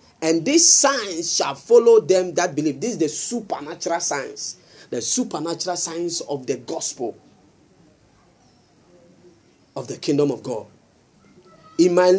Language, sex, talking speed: English, male, 130 wpm